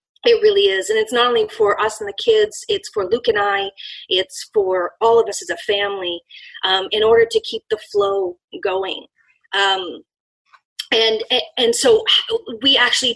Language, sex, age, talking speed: English, female, 30-49, 180 wpm